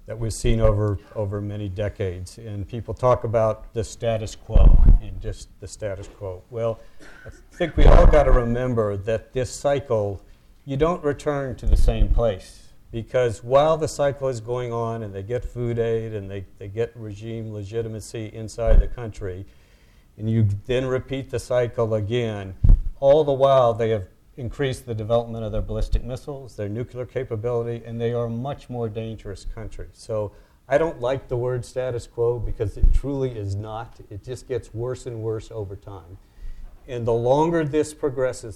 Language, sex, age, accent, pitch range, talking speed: English, male, 50-69, American, 105-125 Hz, 175 wpm